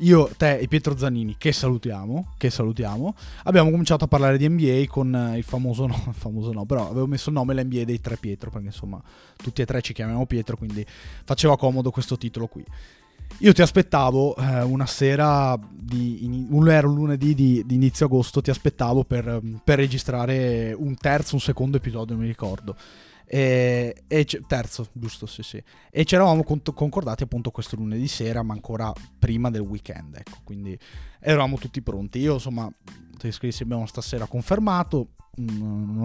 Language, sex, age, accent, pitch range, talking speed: Italian, male, 20-39, native, 110-140 Hz, 175 wpm